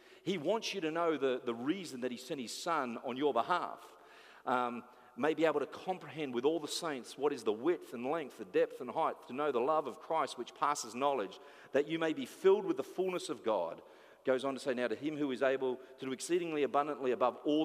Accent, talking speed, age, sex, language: Australian, 240 wpm, 40-59, male, English